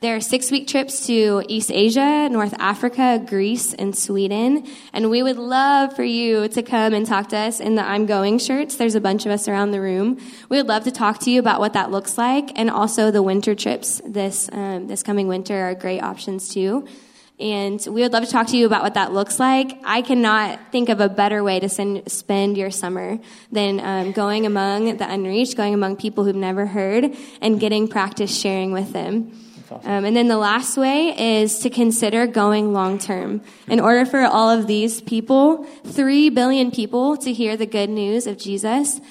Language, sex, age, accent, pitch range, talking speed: English, female, 10-29, American, 200-245 Hz, 205 wpm